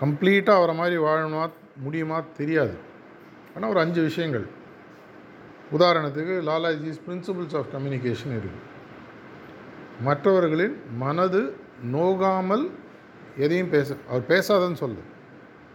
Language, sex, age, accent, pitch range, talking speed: Tamil, male, 50-69, native, 135-170 Hz, 90 wpm